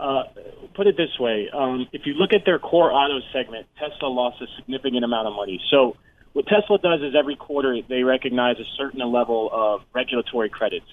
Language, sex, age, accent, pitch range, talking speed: English, male, 30-49, American, 130-175 Hz, 200 wpm